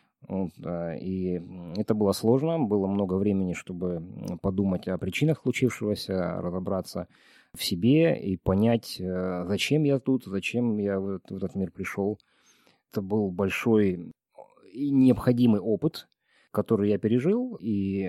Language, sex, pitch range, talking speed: Russian, male, 95-115 Hz, 120 wpm